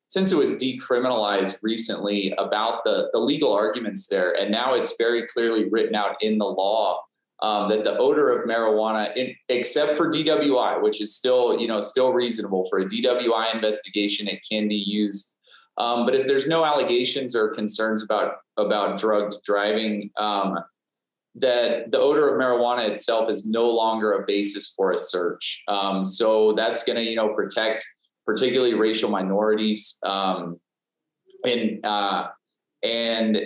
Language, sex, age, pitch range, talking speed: English, male, 30-49, 105-150 Hz, 160 wpm